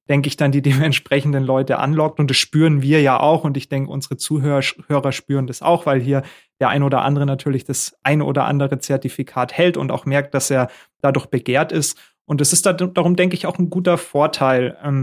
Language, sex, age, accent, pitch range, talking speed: German, male, 30-49, German, 135-160 Hz, 215 wpm